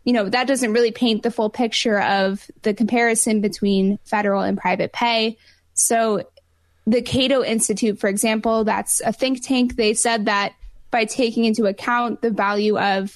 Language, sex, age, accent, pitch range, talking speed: English, female, 10-29, American, 205-240 Hz, 170 wpm